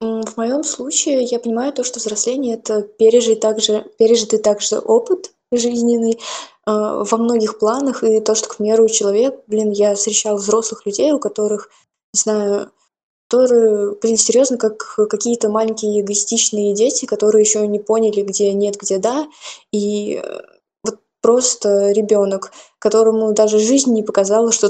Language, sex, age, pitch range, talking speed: Russian, female, 20-39, 210-235 Hz, 145 wpm